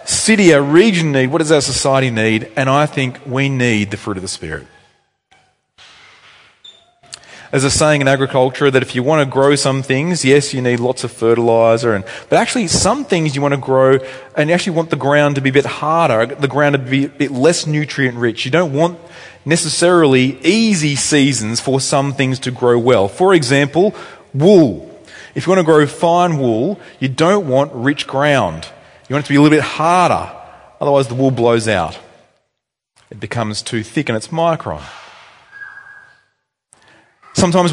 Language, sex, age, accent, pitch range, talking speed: English, male, 30-49, Australian, 125-155 Hz, 180 wpm